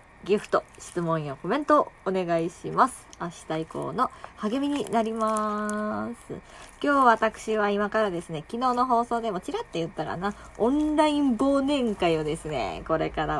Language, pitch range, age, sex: Japanese, 180-265 Hz, 20-39, female